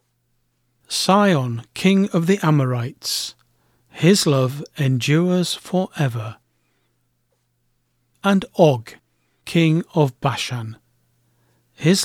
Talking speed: 80 wpm